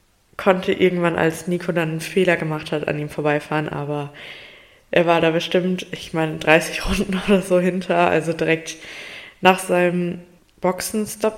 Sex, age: female, 20-39